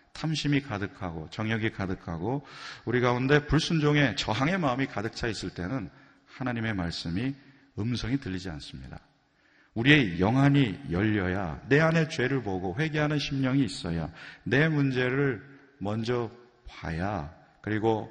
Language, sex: Korean, male